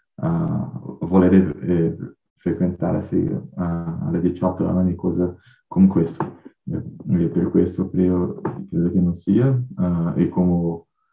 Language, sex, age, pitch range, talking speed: Portuguese, male, 20-39, 85-95 Hz, 120 wpm